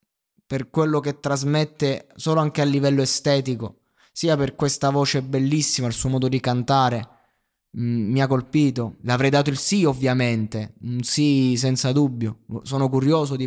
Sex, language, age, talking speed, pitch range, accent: male, Italian, 20-39, 160 wpm, 115-140 Hz, native